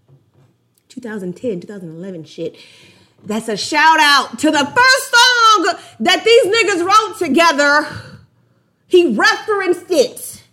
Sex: female